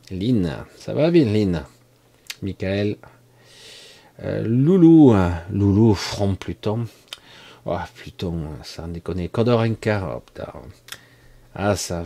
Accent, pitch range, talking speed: French, 95-120 Hz, 95 wpm